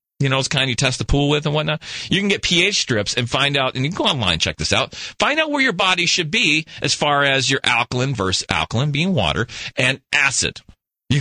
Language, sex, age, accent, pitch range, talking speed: English, male, 40-59, American, 125-175 Hz, 250 wpm